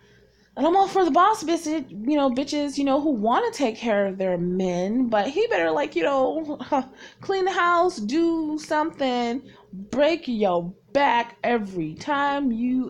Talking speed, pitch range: 165 wpm, 185-260 Hz